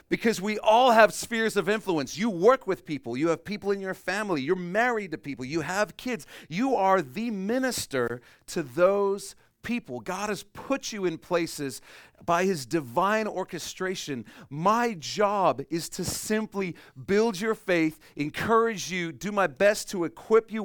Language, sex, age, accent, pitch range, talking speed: English, male, 40-59, American, 130-190 Hz, 165 wpm